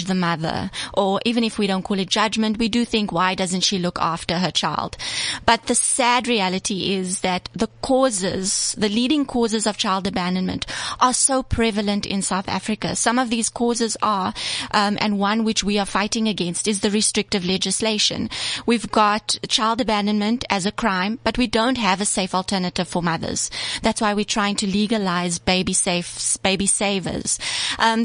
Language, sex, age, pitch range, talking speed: English, female, 20-39, 190-225 Hz, 180 wpm